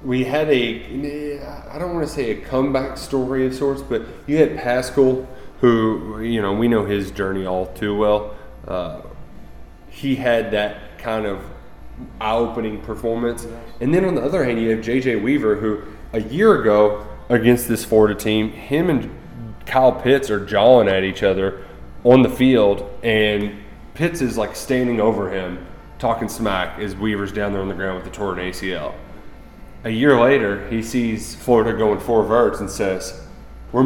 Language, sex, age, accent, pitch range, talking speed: English, male, 20-39, American, 105-140 Hz, 170 wpm